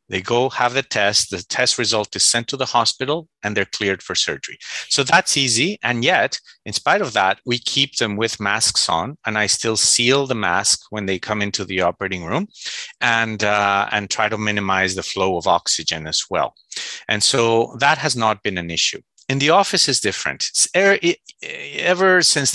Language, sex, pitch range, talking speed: English, male, 100-135 Hz, 200 wpm